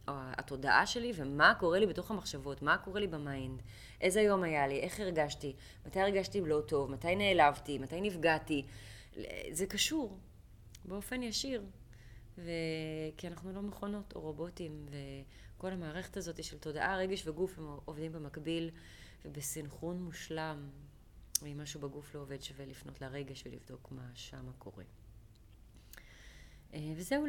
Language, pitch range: Hebrew, 130-165 Hz